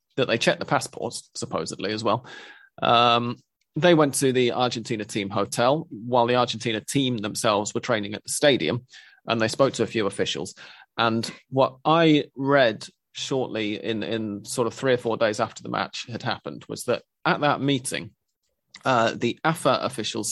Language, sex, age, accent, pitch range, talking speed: English, male, 30-49, British, 115-140 Hz, 175 wpm